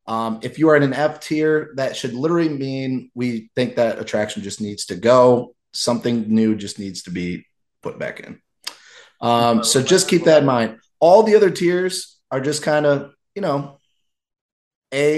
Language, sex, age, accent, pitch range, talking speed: English, male, 30-49, American, 110-140 Hz, 185 wpm